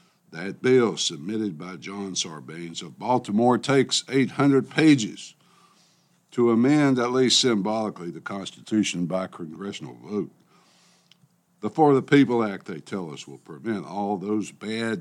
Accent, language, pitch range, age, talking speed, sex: American, English, 105-130 Hz, 60-79, 135 wpm, male